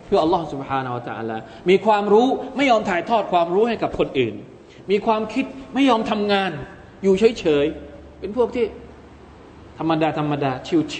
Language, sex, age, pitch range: Thai, male, 20-39, 135-185 Hz